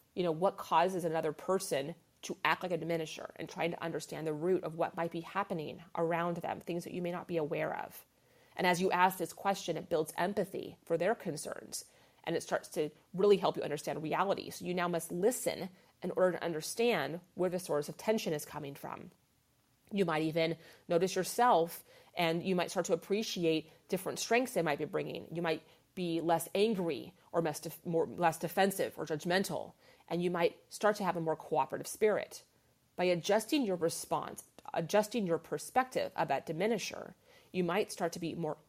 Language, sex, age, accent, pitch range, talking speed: English, female, 30-49, American, 160-190 Hz, 190 wpm